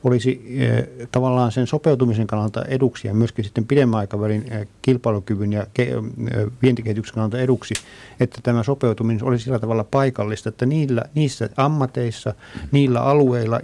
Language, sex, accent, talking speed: Finnish, male, native, 145 wpm